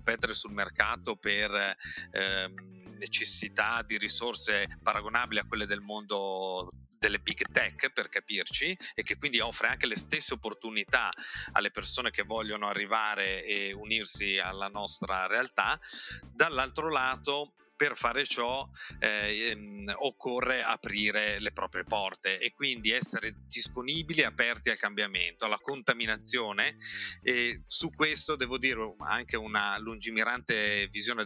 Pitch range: 100-115 Hz